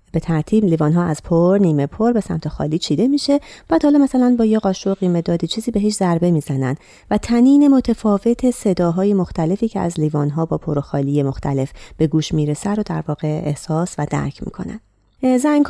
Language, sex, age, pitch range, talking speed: Persian, female, 30-49, 150-210 Hz, 195 wpm